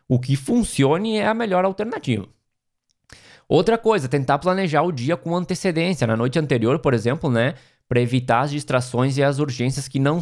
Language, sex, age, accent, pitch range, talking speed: Portuguese, male, 20-39, Brazilian, 120-175 Hz, 175 wpm